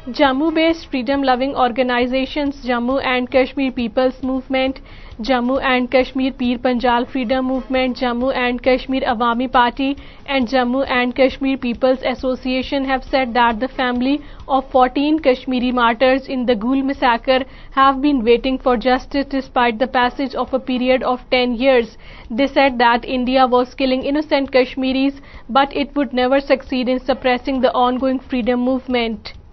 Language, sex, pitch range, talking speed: Urdu, female, 250-270 Hz, 145 wpm